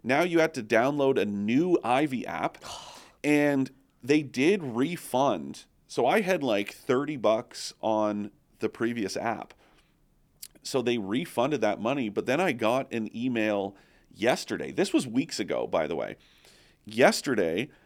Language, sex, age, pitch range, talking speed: English, male, 40-59, 105-135 Hz, 145 wpm